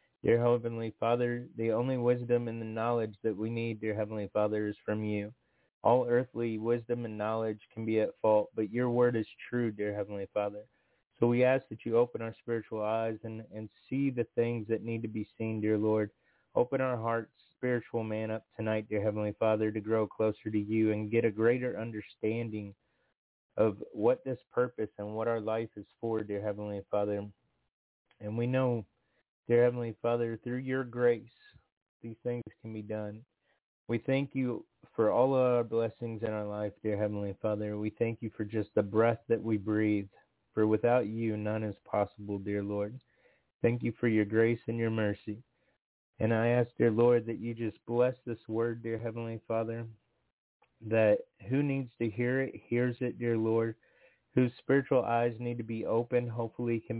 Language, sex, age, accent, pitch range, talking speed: English, male, 30-49, American, 110-120 Hz, 185 wpm